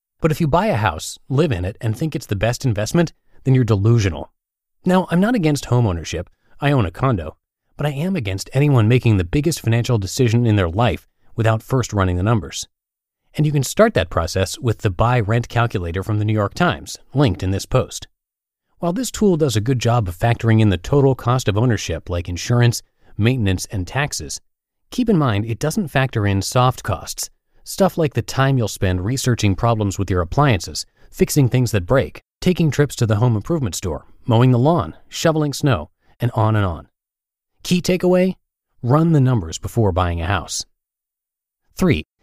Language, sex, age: English, male, 30-49